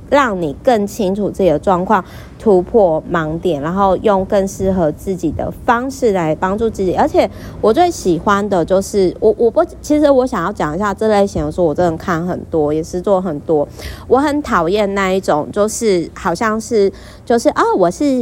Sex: female